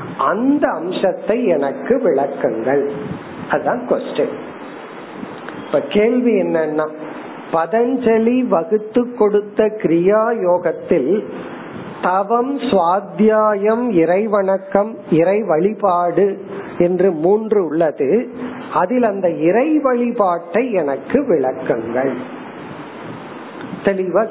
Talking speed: 50 wpm